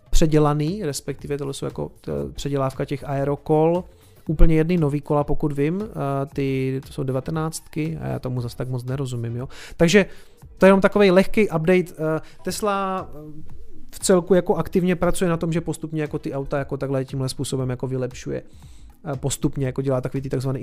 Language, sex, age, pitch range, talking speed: Czech, male, 30-49, 140-170 Hz, 170 wpm